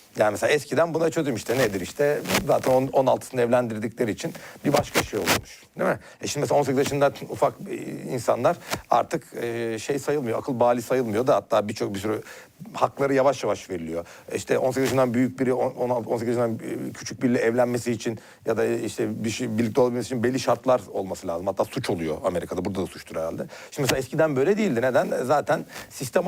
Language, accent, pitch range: Turkish, native, 120-150 Hz